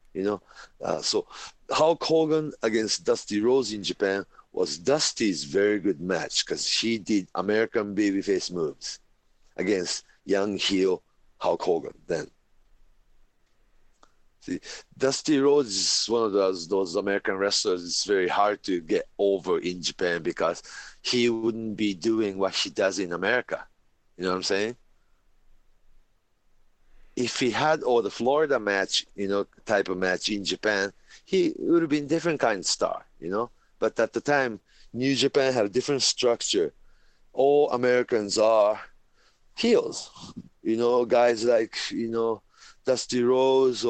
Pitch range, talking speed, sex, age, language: 100-145 Hz, 150 wpm, male, 40-59, English